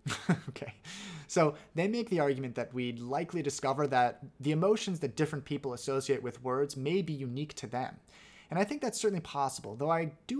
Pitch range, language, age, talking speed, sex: 130-180 Hz, English, 30-49, 190 wpm, male